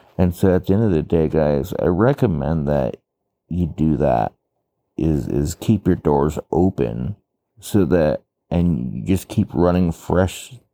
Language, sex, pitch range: English, male, 80-105 Hz